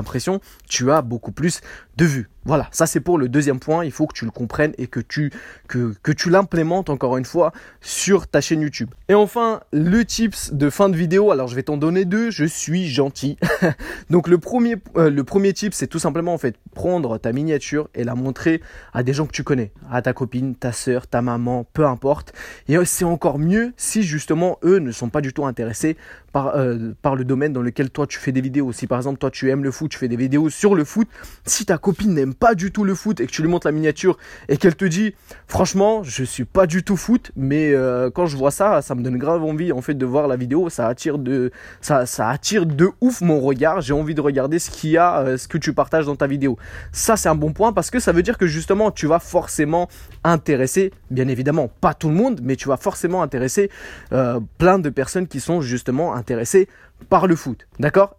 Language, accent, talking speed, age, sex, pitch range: French, French, 240 wpm, 20-39, male, 135-185 Hz